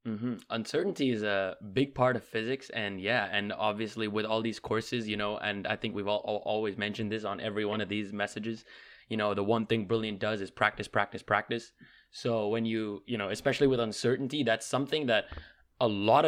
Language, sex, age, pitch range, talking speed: English, male, 20-39, 105-135 Hz, 215 wpm